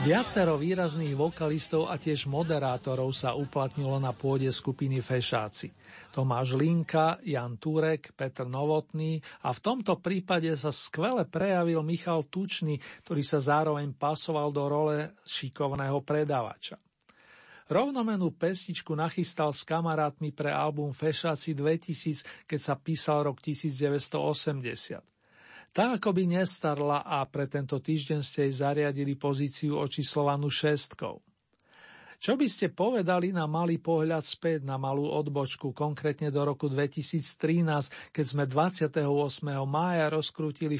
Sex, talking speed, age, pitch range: male, 120 wpm, 50-69, 145-165 Hz